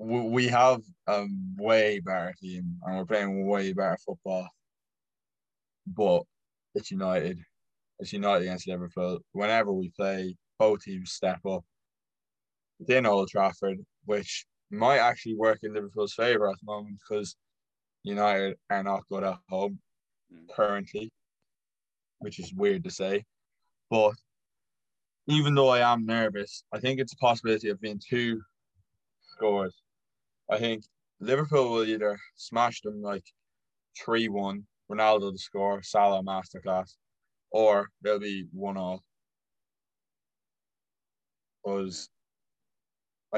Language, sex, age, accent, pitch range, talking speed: English, male, 20-39, British, 95-115 Hz, 120 wpm